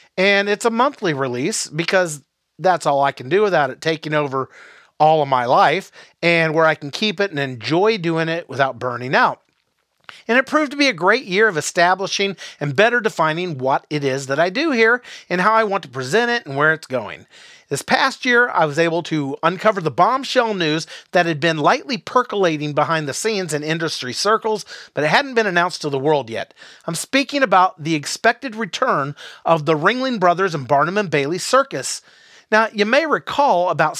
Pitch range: 150-205 Hz